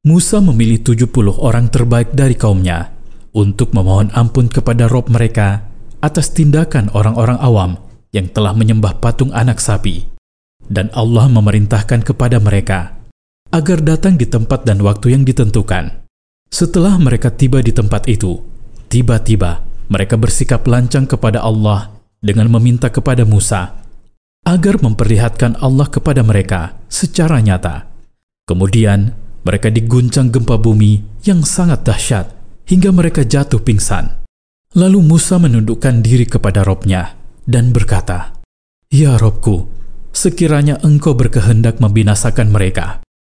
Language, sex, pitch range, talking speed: Indonesian, male, 105-130 Hz, 120 wpm